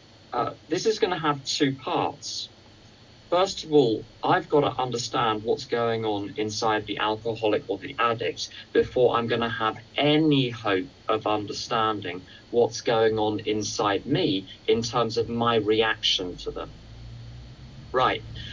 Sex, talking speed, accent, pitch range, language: male, 150 wpm, British, 110-135 Hz, English